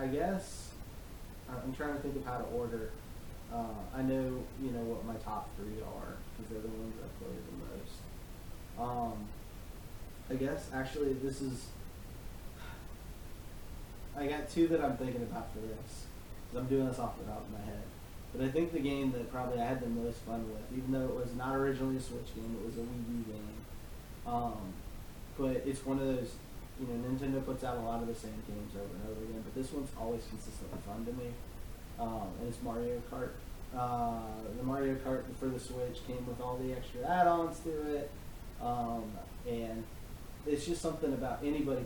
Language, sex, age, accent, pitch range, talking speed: English, male, 20-39, American, 105-130 Hz, 195 wpm